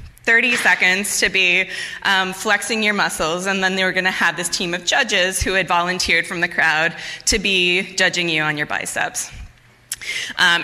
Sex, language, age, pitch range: female, English, 20-39, 170-200 Hz